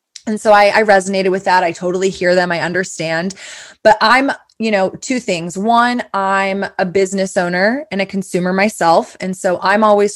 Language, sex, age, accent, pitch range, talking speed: English, female, 20-39, American, 175-200 Hz, 190 wpm